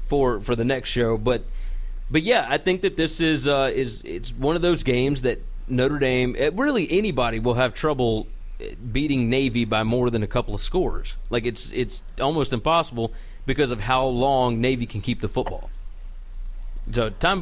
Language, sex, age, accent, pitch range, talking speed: English, male, 30-49, American, 115-150 Hz, 185 wpm